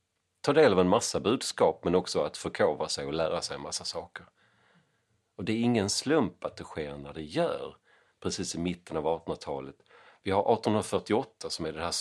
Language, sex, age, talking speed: Swedish, male, 40-59, 200 wpm